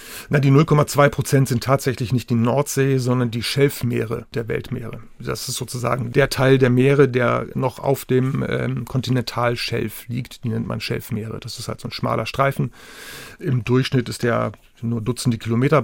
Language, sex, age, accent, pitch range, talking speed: German, male, 40-59, German, 120-135 Hz, 175 wpm